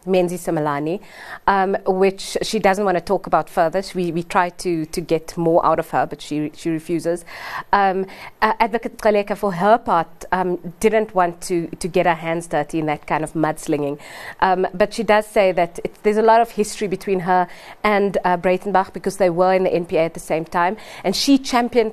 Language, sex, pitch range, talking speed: English, female, 175-215 Hz, 210 wpm